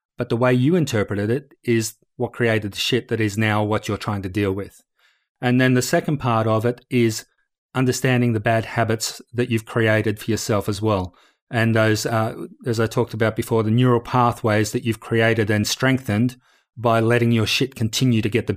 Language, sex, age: English, male, 30-49